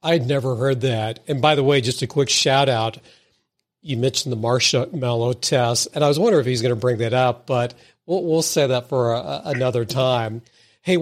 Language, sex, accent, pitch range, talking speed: English, male, American, 120-155 Hz, 220 wpm